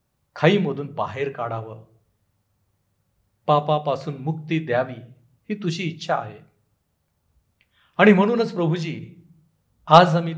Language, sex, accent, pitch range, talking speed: Marathi, male, native, 115-160 Hz, 85 wpm